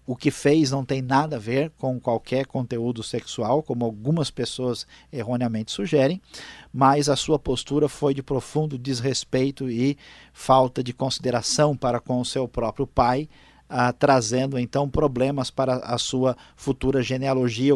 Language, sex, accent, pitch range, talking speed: Portuguese, male, Brazilian, 125-145 Hz, 150 wpm